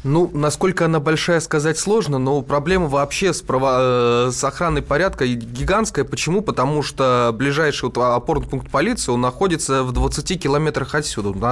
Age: 20-39